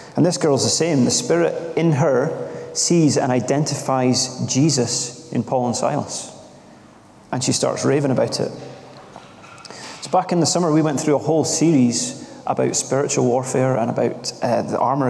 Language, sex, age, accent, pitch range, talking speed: English, male, 30-49, British, 125-150 Hz, 165 wpm